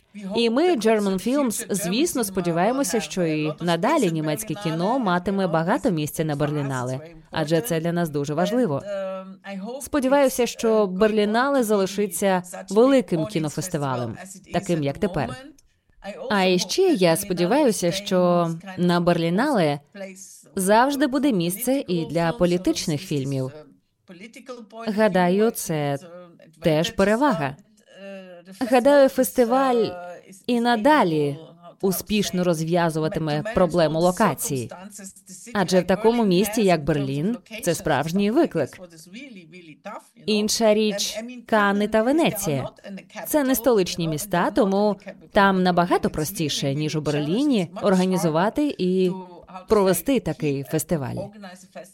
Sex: female